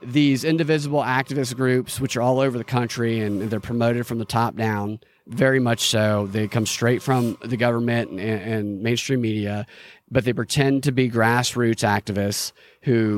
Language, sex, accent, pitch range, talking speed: English, male, American, 115-155 Hz, 175 wpm